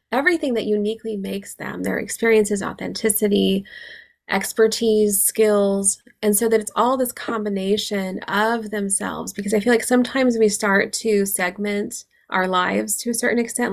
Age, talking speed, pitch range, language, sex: 20-39, 150 wpm, 190-225 Hz, English, female